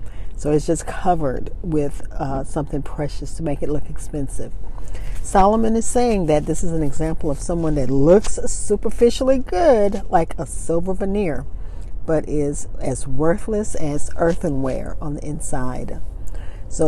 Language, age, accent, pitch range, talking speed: English, 40-59, American, 135-185 Hz, 145 wpm